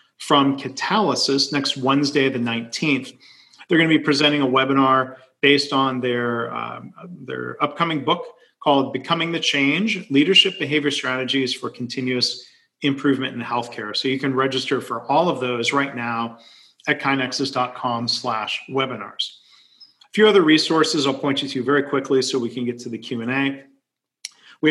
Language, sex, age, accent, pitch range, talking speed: English, male, 40-59, American, 120-145 Hz, 160 wpm